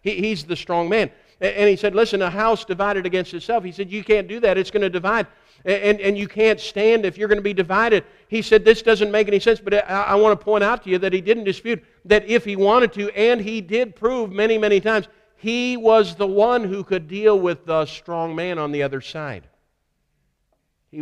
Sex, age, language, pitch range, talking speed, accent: male, 50-69, English, 165-205 Hz, 230 wpm, American